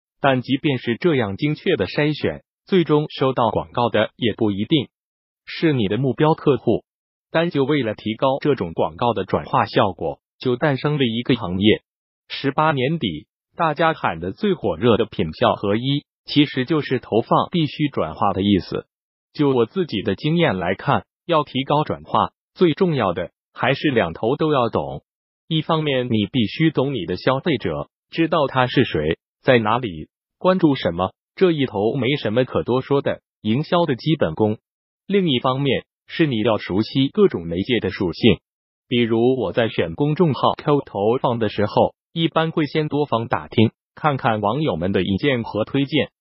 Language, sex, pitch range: Chinese, male, 115-155 Hz